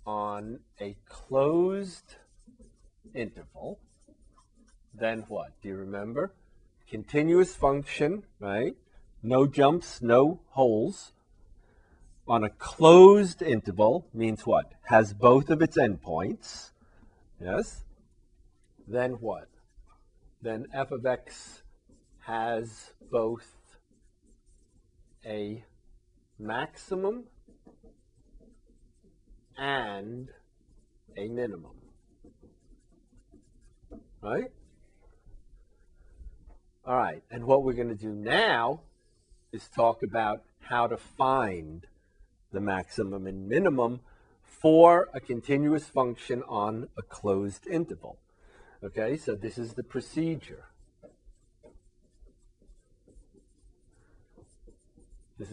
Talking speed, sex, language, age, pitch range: 80 wpm, male, English, 40-59, 100-135 Hz